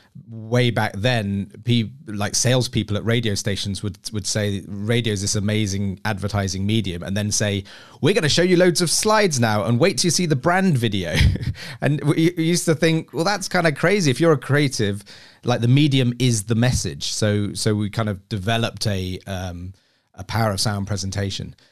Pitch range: 100-120 Hz